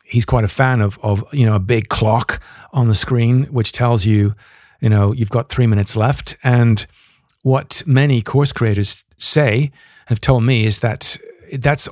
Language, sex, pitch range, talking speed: English, male, 110-130 Hz, 180 wpm